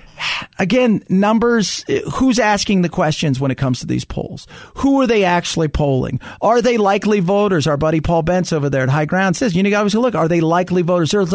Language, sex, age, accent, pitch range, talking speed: English, male, 40-59, American, 140-200 Hz, 205 wpm